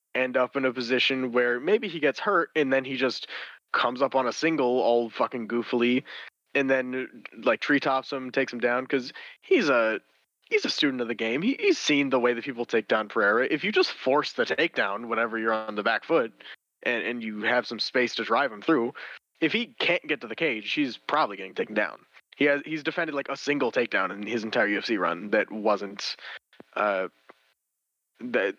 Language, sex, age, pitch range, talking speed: English, male, 20-39, 120-150 Hz, 210 wpm